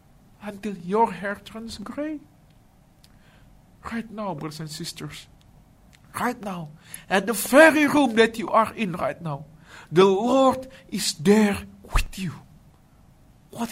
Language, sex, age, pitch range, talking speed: English, male, 50-69, 160-230 Hz, 125 wpm